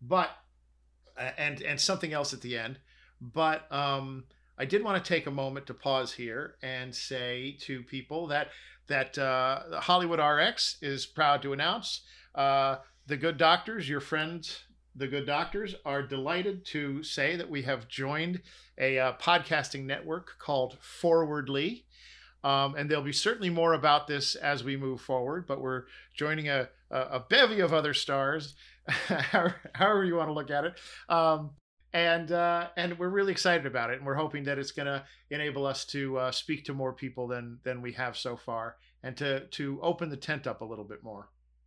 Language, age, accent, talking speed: English, 50-69, American, 180 wpm